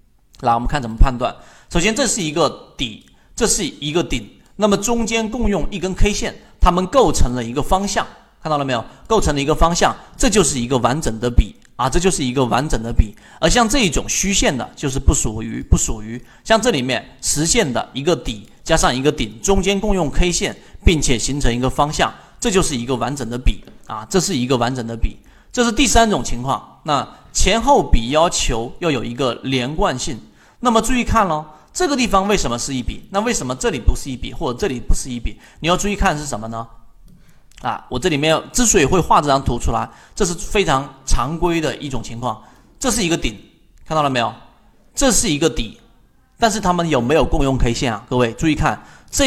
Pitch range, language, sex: 120-190 Hz, Chinese, male